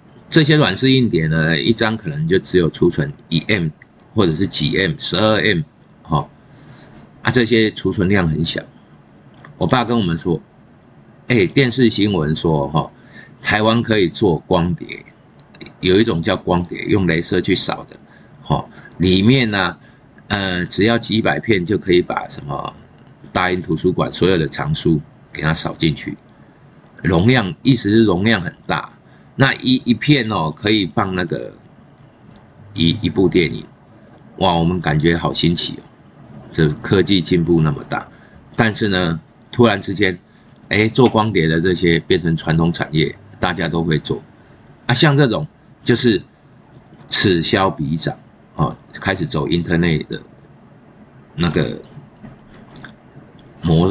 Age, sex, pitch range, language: 50-69, male, 85-115 Hz, Chinese